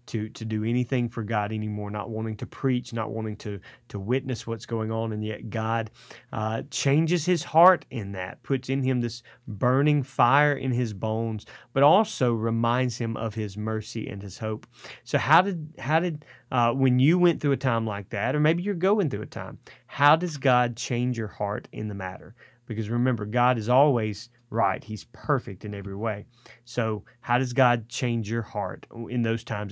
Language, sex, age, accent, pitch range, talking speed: English, male, 30-49, American, 110-130 Hz, 200 wpm